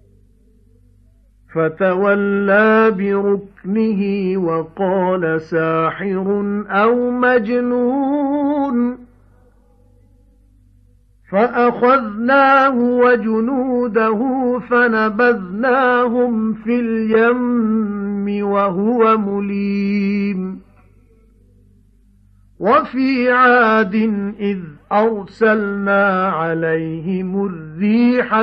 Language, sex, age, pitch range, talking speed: English, male, 50-69, 160-245 Hz, 40 wpm